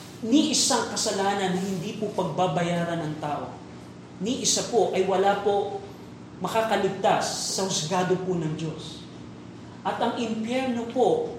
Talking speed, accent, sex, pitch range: 130 wpm, native, male, 170-210 Hz